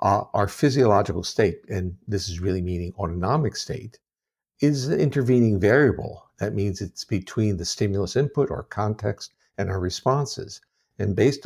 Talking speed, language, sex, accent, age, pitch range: 150 wpm, English, male, American, 60-79, 95-125 Hz